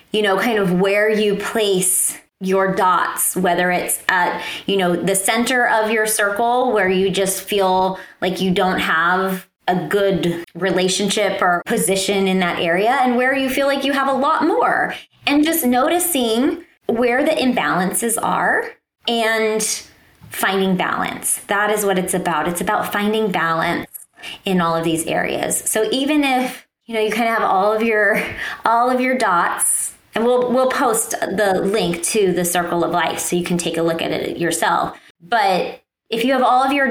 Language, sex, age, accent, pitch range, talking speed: English, female, 20-39, American, 190-255 Hz, 180 wpm